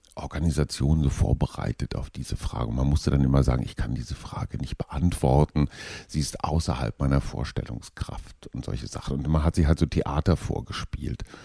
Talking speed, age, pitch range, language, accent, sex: 175 wpm, 50-69, 75-95 Hz, German, German, male